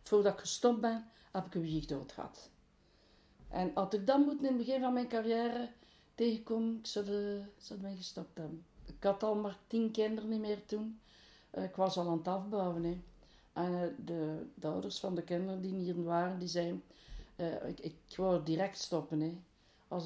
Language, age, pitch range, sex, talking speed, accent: Dutch, 60-79, 170-225 Hz, female, 190 wpm, Dutch